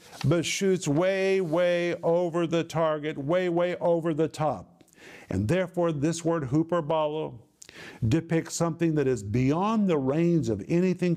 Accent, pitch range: American, 140-170 Hz